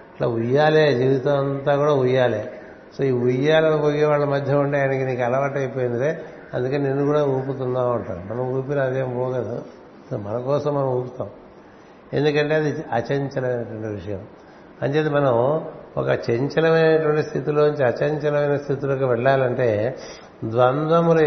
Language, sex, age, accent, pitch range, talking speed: Telugu, male, 60-79, native, 120-150 Hz, 125 wpm